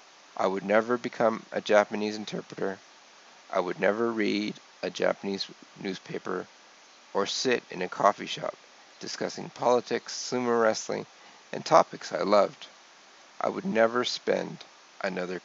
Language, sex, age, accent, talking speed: English, male, 50-69, American, 130 wpm